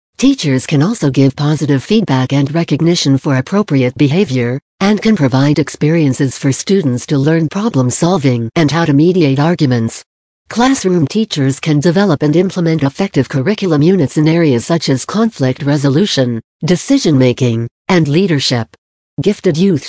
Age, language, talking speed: 60-79, English, 135 wpm